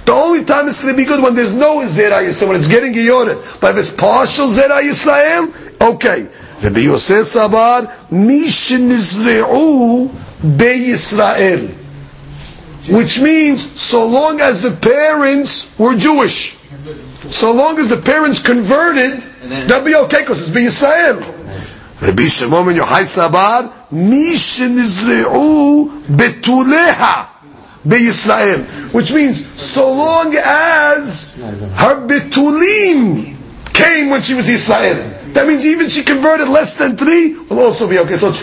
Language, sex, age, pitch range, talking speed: English, male, 50-69, 175-285 Hz, 140 wpm